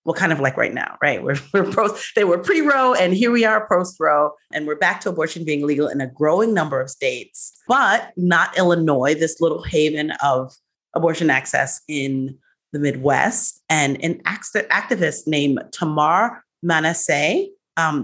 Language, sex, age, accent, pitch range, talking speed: English, female, 30-49, American, 145-205 Hz, 175 wpm